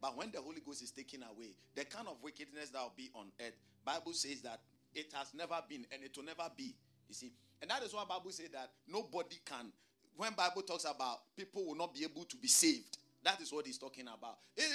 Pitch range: 135-205 Hz